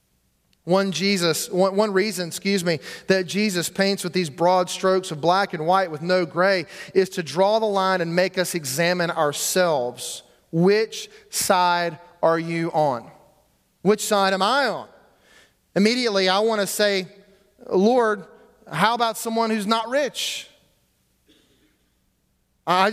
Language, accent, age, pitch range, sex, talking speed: English, American, 30-49, 150-190 Hz, male, 140 wpm